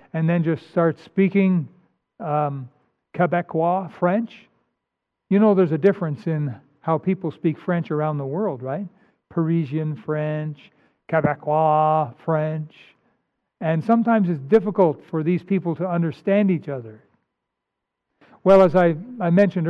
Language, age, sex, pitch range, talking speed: English, 60-79, male, 160-195 Hz, 130 wpm